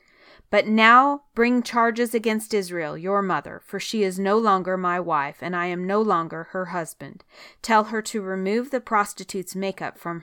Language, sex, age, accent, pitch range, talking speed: English, female, 30-49, American, 180-215 Hz, 175 wpm